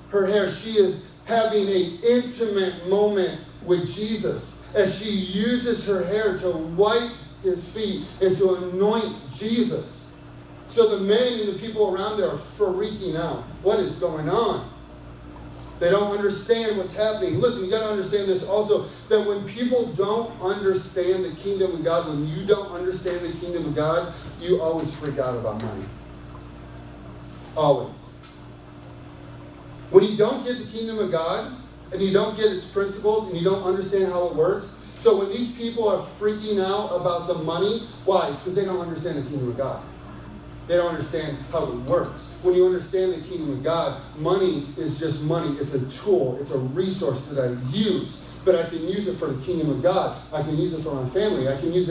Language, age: English, 30-49